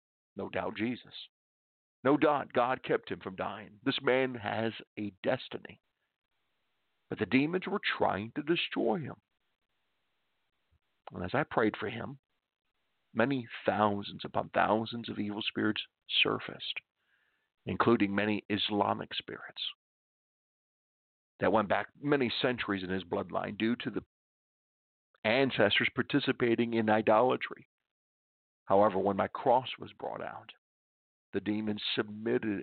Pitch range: 100-140 Hz